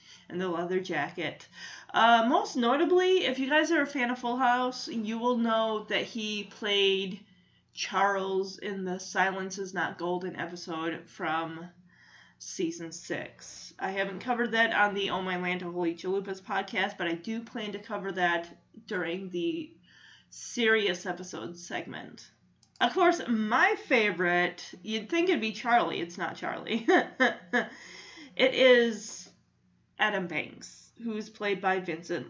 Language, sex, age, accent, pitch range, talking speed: English, female, 30-49, American, 185-240 Hz, 145 wpm